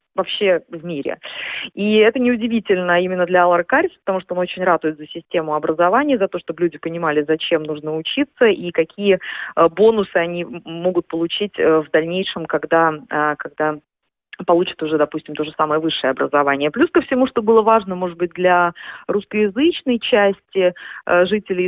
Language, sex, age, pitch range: Russian, female, 30-49, 170-210 Hz